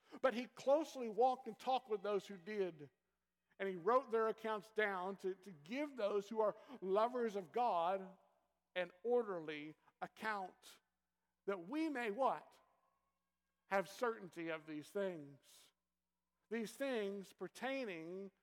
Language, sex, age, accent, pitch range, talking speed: English, male, 60-79, American, 190-245 Hz, 130 wpm